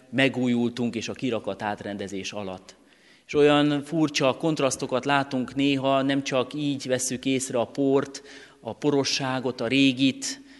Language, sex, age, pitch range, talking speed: Hungarian, male, 30-49, 115-135 Hz, 130 wpm